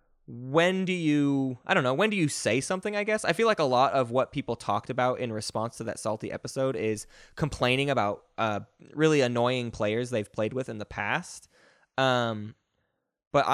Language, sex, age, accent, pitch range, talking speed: English, male, 20-39, American, 110-140 Hz, 195 wpm